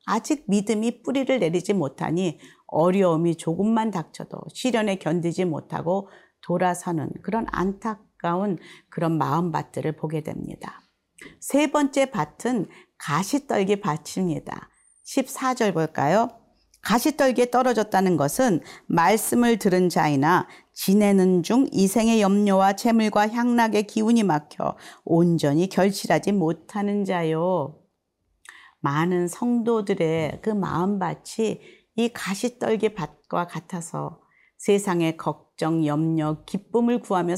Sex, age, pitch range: female, 40-59, 165-220 Hz